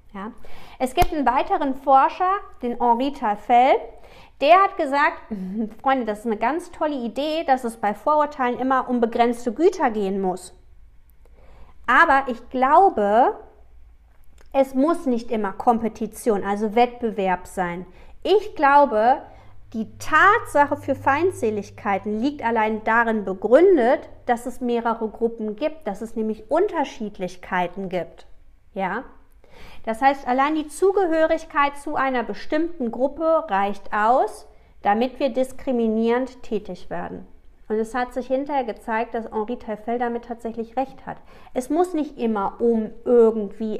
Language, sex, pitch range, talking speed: German, female, 220-280 Hz, 130 wpm